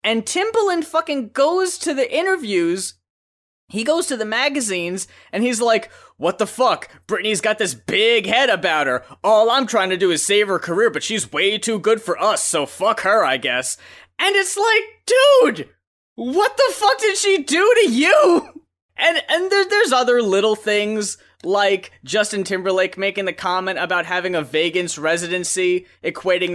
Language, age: English, 20-39